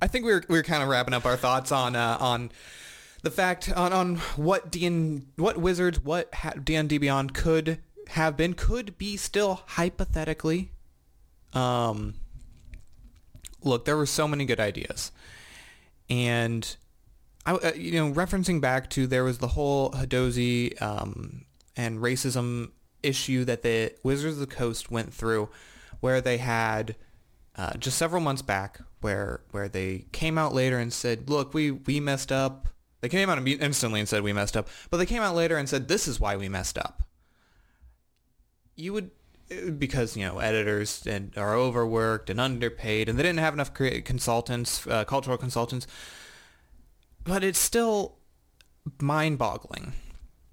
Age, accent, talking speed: 20-39, American, 160 wpm